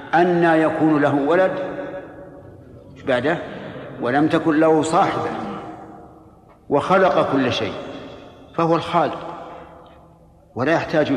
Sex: male